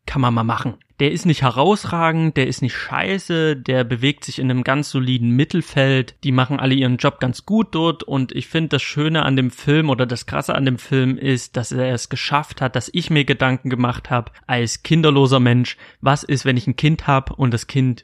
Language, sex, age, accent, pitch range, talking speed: German, male, 30-49, German, 125-145 Hz, 225 wpm